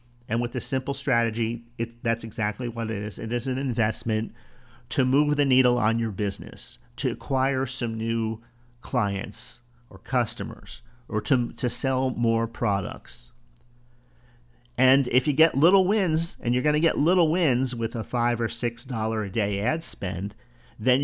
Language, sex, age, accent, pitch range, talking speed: English, male, 40-59, American, 110-130 Hz, 165 wpm